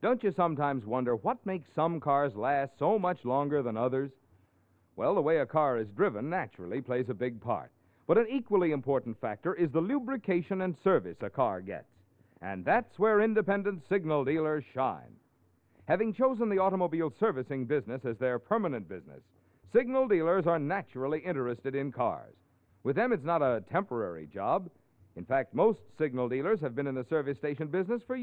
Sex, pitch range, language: male, 130-190 Hz, English